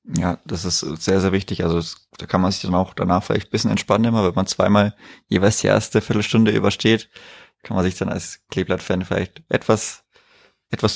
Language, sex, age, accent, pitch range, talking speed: German, male, 20-39, German, 95-110 Hz, 205 wpm